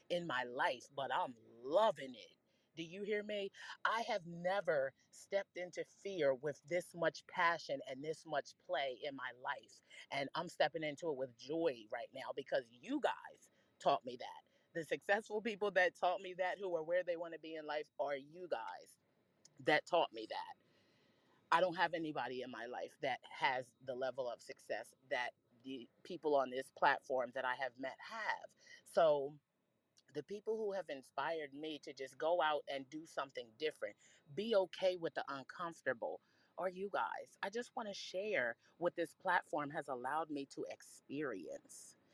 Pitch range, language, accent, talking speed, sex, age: 145-190 Hz, English, American, 180 wpm, female, 30-49